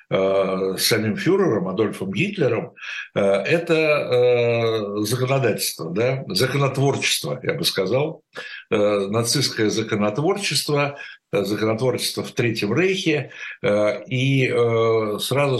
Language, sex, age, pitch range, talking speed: Russian, male, 60-79, 105-140 Hz, 75 wpm